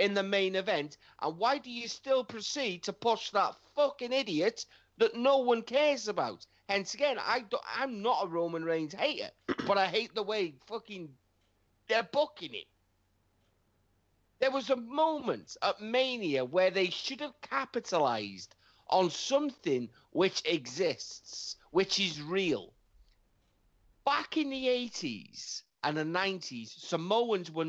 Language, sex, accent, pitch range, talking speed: English, male, British, 155-235 Hz, 145 wpm